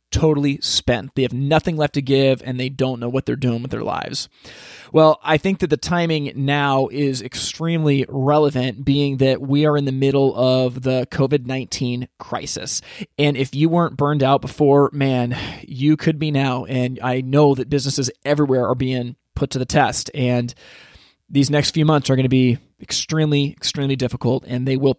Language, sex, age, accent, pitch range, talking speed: English, male, 20-39, American, 130-150 Hz, 185 wpm